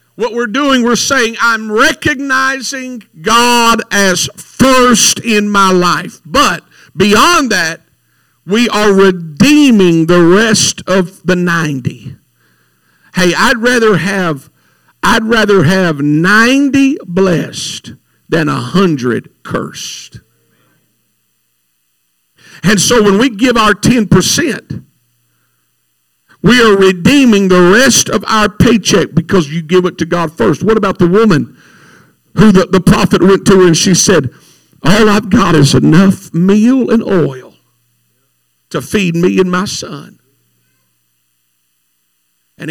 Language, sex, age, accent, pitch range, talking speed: English, male, 50-69, American, 130-215 Hz, 125 wpm